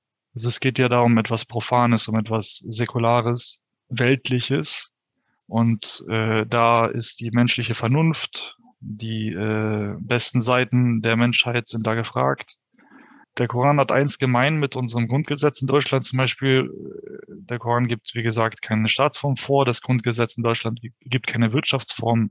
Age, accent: 20-39, German